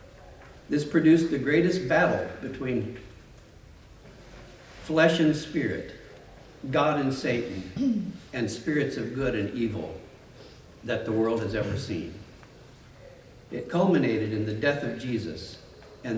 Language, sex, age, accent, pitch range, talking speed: English, male, 60-79, American, 110-155 Hz, 120 wpm